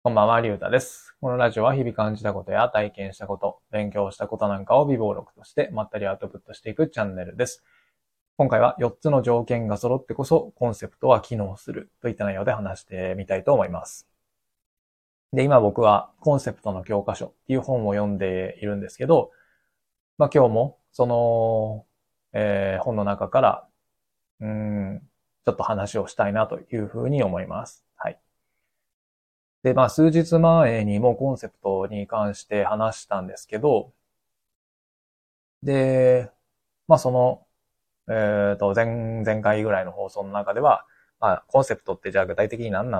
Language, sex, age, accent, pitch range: Japanese, male, 20-39, native, 100-125 Hz